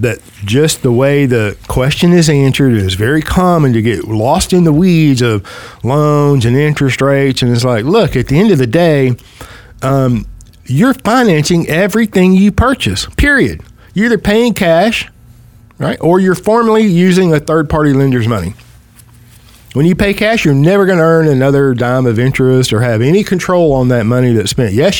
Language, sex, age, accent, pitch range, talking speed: English, male, 50-69, American, 120-175 Hz, 180 wpm